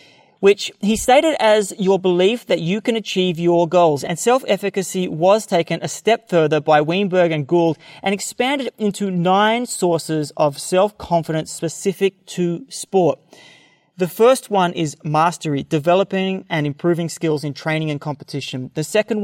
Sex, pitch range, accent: male, 150-190 Hz, Australian